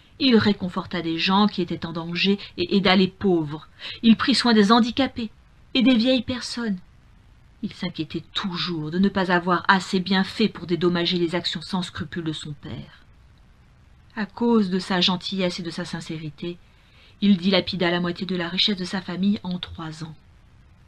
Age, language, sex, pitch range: 40-59, French, female, 170-210 Hz